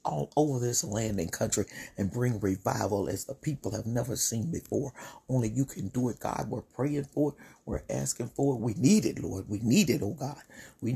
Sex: male